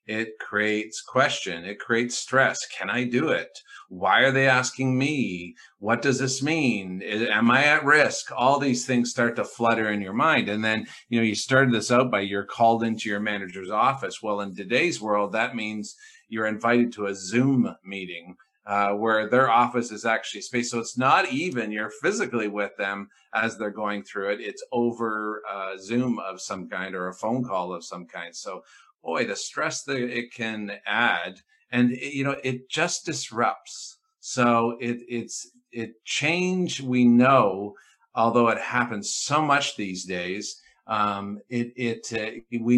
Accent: American